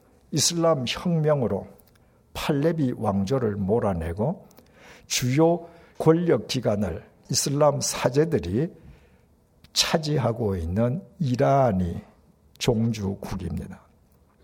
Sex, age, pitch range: male, 60-79, 100-150 Hz